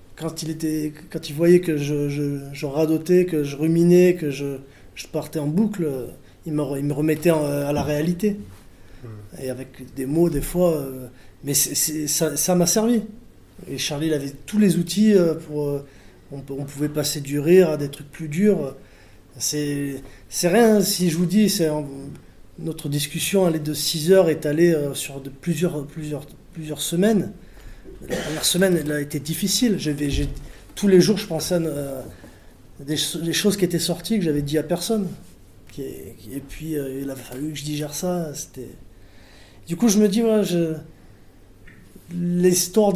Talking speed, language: 185 wpm, French